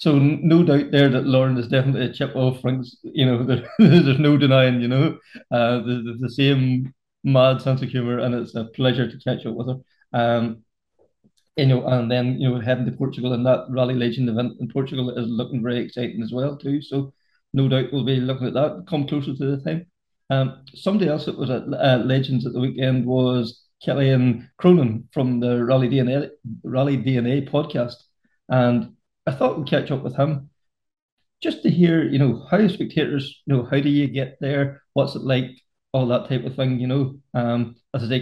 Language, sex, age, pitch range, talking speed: English, male, 30-49, 120-140 Hz, 205 wpm